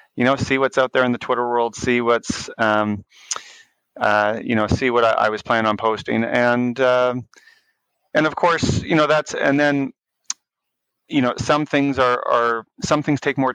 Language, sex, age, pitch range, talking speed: English, male, 30-49, 110-135 Hz, 195 wpm